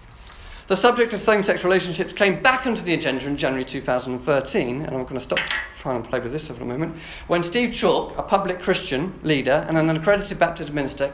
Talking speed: 205 wpm